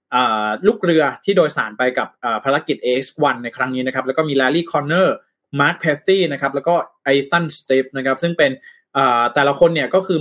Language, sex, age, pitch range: Thai, male, 20-39, 135-175 Hz